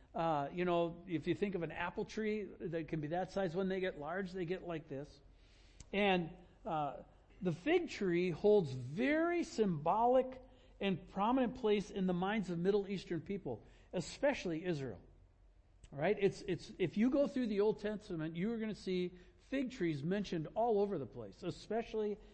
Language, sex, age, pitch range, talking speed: English, male, 60-79, 165-220 Hz, 180 wpm